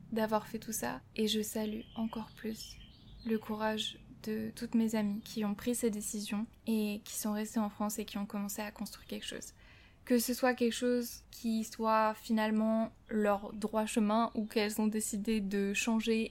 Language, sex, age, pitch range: French, female, 10-29, 210-235 Hz